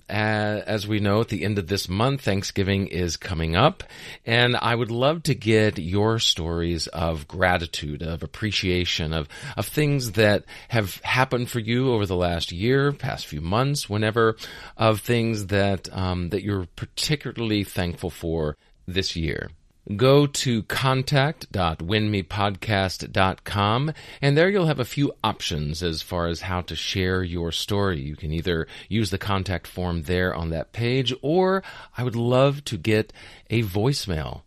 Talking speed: 155 wpm